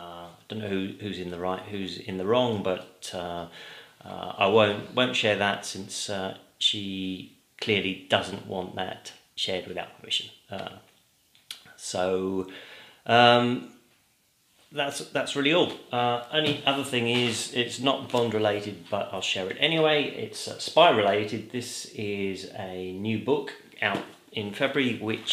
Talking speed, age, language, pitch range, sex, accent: 150 wpm, 30-49, English, 95-120 Hz, male, British